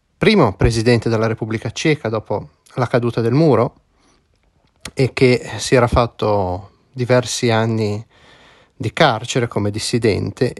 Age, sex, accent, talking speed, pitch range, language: 30-49, male, native, 120 wpm, 110-140 Hz, Italian